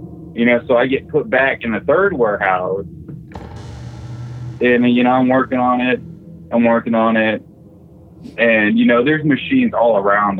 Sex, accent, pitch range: male, American, 100-125 Hz